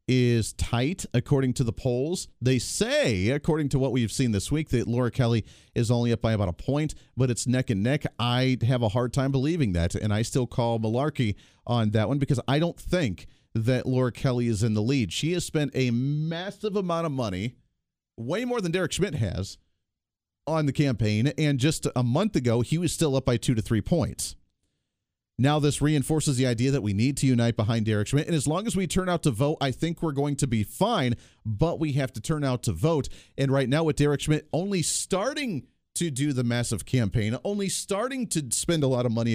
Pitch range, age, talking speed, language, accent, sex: 110-150 Hz, 40-59, 220 wpm, English, American, male